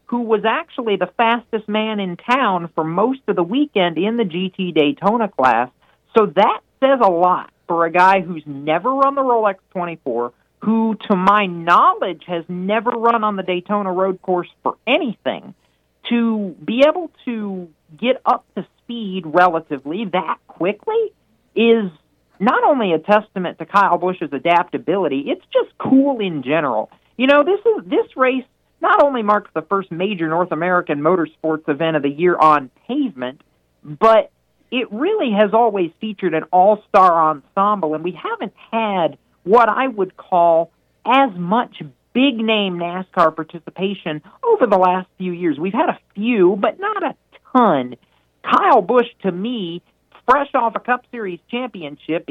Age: 40-59